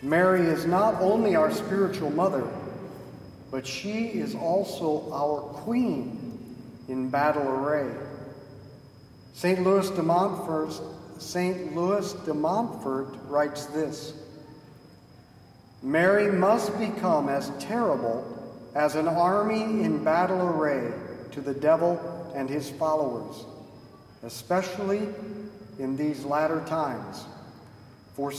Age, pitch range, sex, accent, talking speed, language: 50-69, 150-205 Hz, male, American, 95 wpm, English